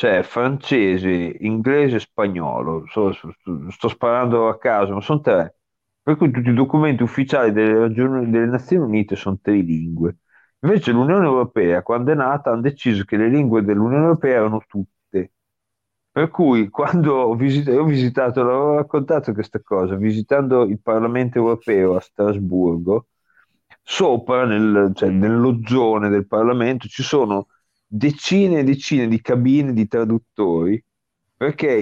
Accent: native